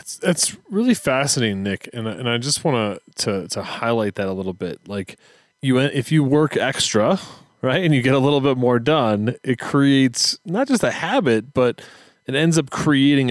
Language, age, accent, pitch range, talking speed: English, 30-49, American, 105-135 Hz, 195 wpm